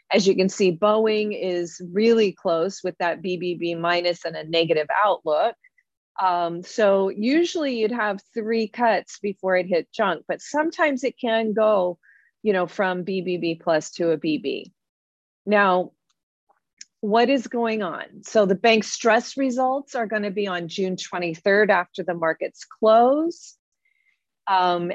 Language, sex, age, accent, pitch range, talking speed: English, female, 40-59, American, 180-235 Hz, 150 wpm